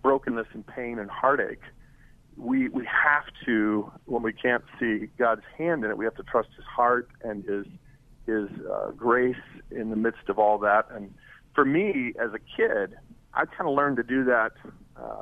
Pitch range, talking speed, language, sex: 110-135 Hz, 185 wpm, English, male